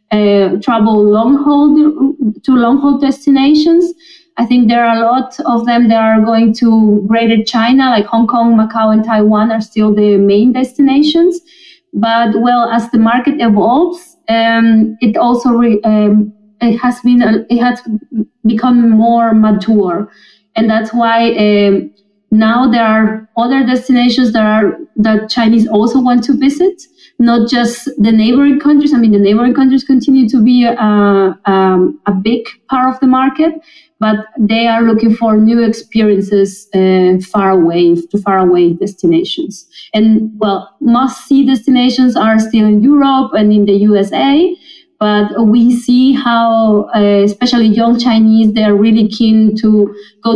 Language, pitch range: English, 210-245 Hz